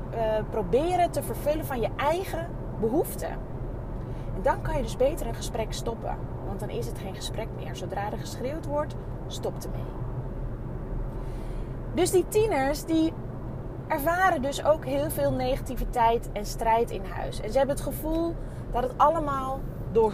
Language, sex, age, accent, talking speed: Dutch, female, 20-39, Dutch, 155 wpm